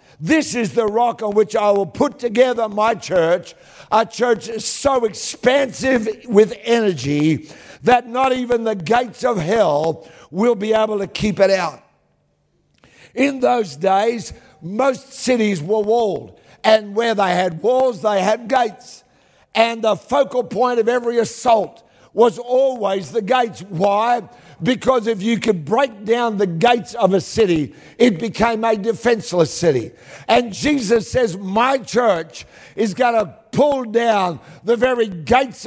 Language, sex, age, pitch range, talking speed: English, male, 60-79, 205-250 Hz, 150 wpm